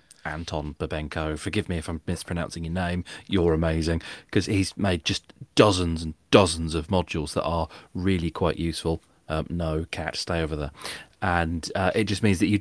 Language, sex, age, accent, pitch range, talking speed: English, male, 30-49, British, 85-115 Hz, 180 wpm